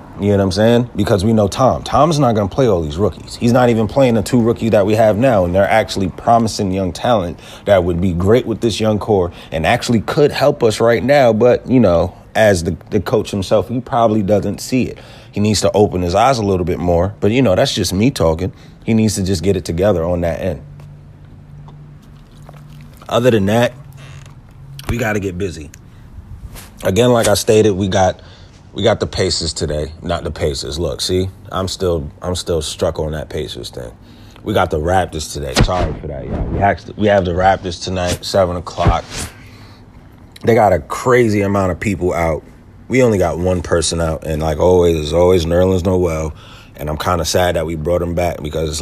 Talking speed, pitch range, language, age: 210 wpm, 85-110 Hz, English, 30-49